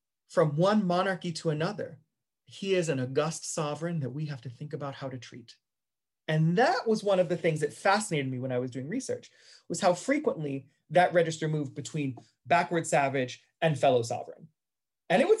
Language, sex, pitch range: English, male, 135-185 Hz